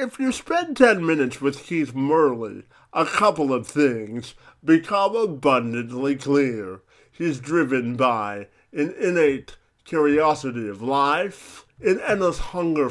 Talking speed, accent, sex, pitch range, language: 120 wpm, American, male, 130-195 Hz, English